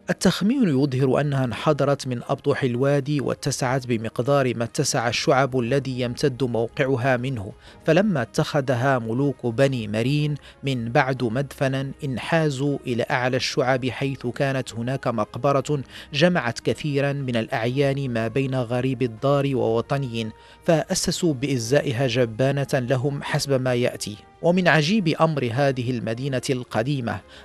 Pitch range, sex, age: 125-145 Hz, male, 40-59